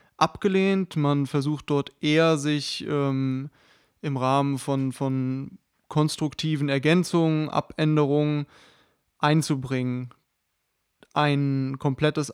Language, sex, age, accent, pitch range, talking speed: German, male, 20-39, German, 140-155 Hz, 85 wpm